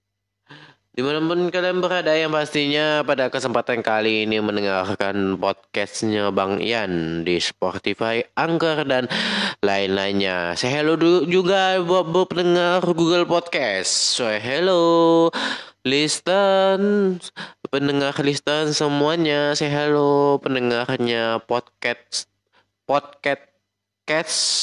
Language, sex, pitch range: Indonesian, male, 105-160 Hz